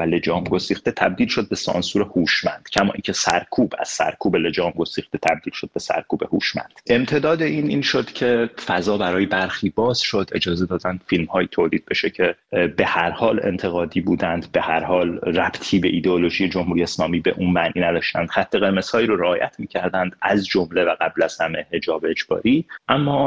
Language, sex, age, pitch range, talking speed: Persian, male, 30-49, 85-105 Hz, 180 wpm